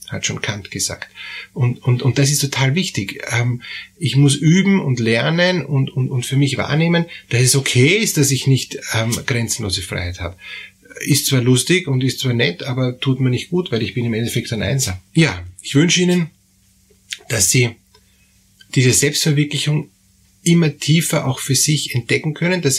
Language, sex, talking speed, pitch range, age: German, male, 180 wpm, 120-150 Hz, 30-49